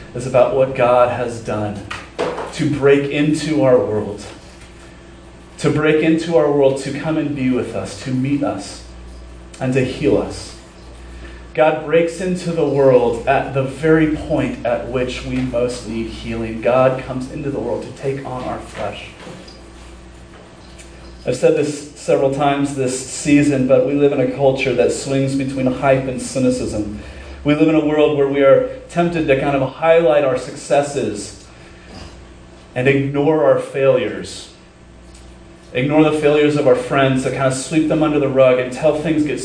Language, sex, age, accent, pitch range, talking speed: English, male, 30-49, American, 110-145 Hz, 165 wpm